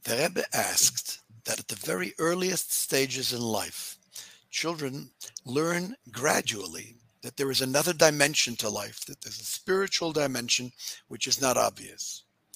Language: English